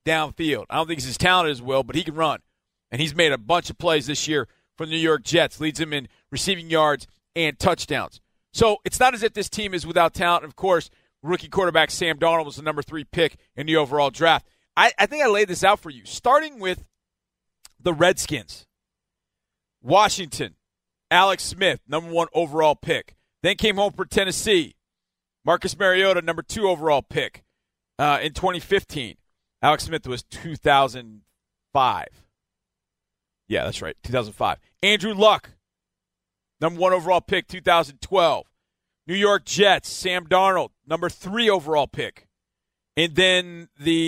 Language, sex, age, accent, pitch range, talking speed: English, male, 40-59, American, 145-190 Hz, 165 wpm